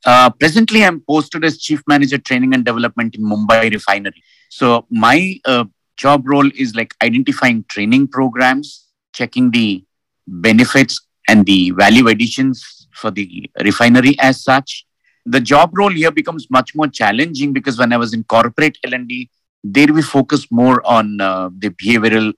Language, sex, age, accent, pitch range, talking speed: English, male, 50-69, Indian, 110-130 Hz, 155 wpm